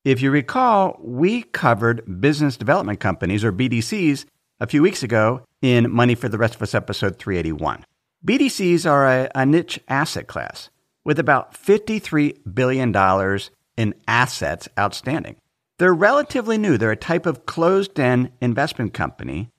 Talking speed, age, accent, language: 145 wpm, 50-69, American, English